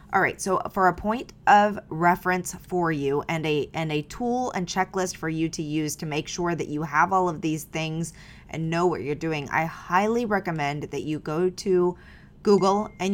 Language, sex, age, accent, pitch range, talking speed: English, female, 20-39, American, 155-185 Hz, 205 wpm